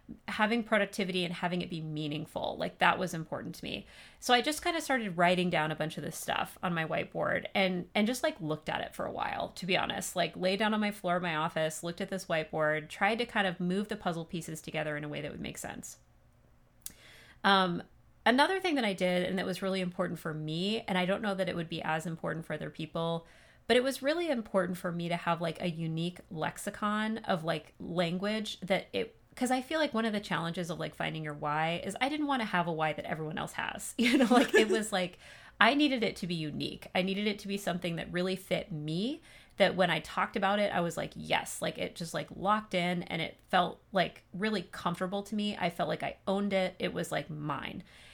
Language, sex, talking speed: English, female, 245 wpm